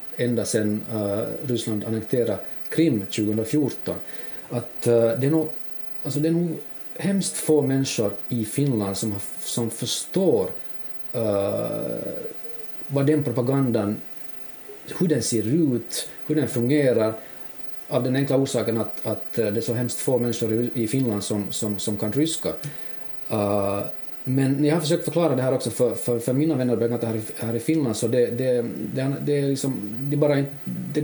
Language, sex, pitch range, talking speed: Swedish, male, 115-150 Hz, 155 wpm